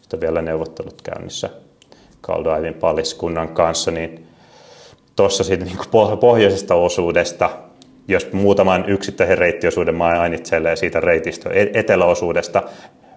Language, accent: Finnish, native